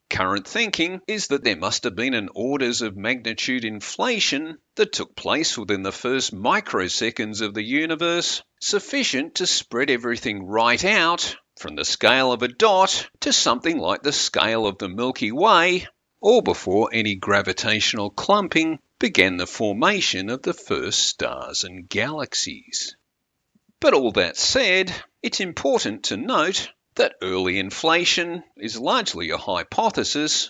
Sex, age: male, 50-69